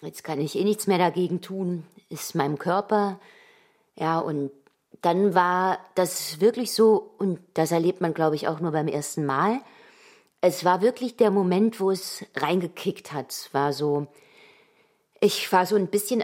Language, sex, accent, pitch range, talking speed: German, female, German, 165-220 Hz, 170 wpm